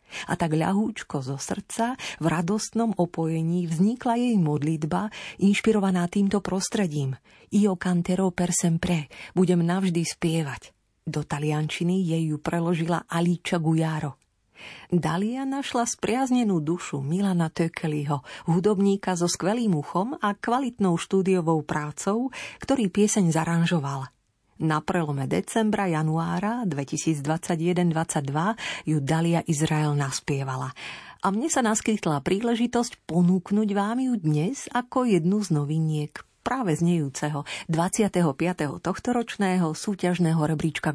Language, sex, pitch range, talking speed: Slovak, female, 155-205 Hz, 105 wpm